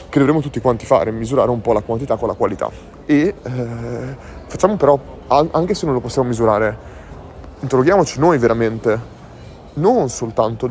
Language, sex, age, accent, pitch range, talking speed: Italian, male, 20-39, native, 110-140 Hz, 150 wpm